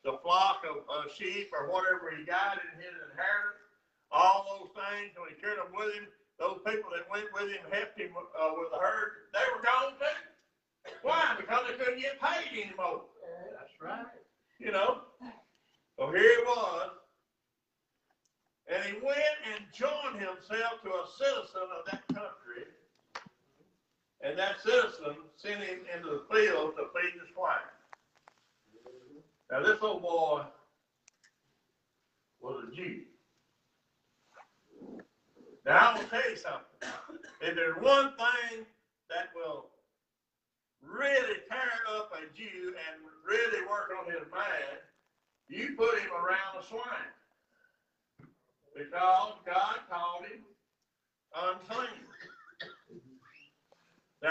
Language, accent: English, American